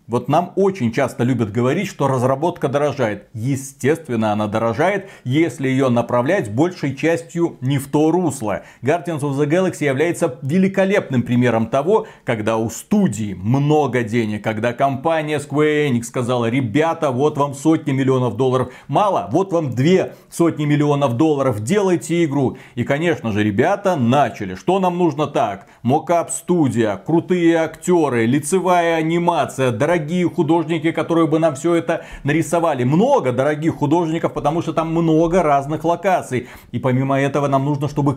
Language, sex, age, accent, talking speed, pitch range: Russian, male, 40-59, native, 145 wpm, 130-165 Hz